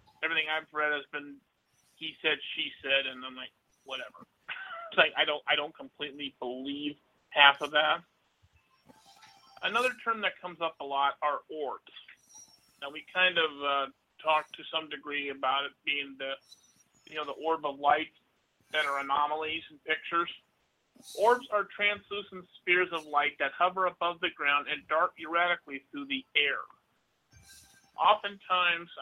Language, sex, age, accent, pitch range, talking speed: English, male, 40-59, American, 140-180 Hz, 155 wpm